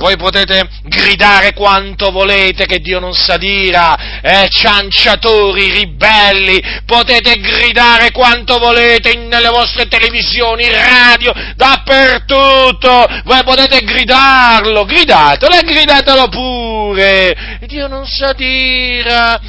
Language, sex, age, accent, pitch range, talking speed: Italian, male, 40-59, native, 215-260 Hz, 100 wpm